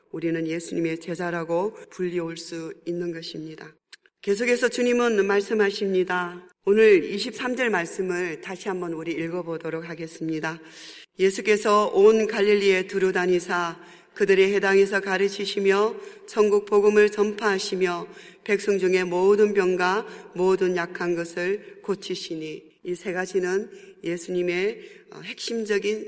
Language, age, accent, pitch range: Korean, 40-59, native, 180-205 Hz